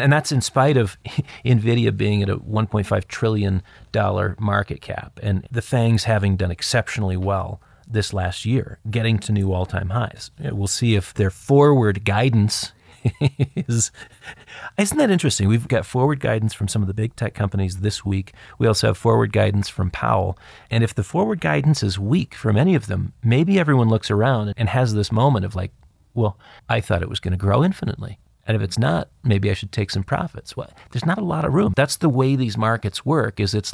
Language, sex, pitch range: English, male, 100-125 Hz